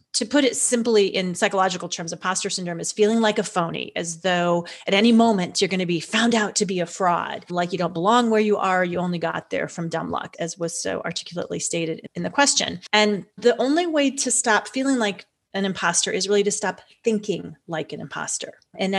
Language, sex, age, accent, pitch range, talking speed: English, female, 30-49, American, 180-220 Hz, 220 wpm